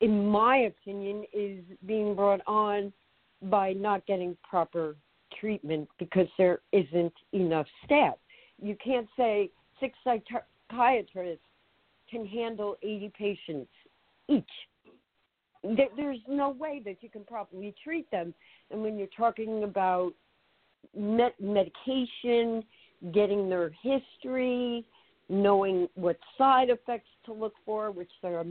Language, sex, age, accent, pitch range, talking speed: English, female, 60-79, American, 185-230 Hz, 115 wpm